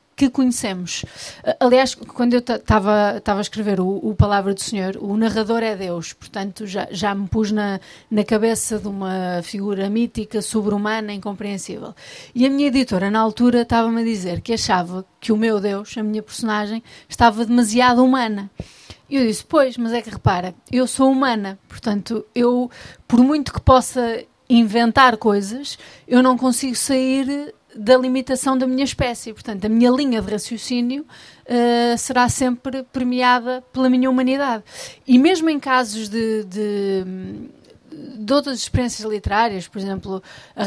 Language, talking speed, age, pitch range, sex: Portuguese, 155 wpm, 30-49, 210-250 Hz, female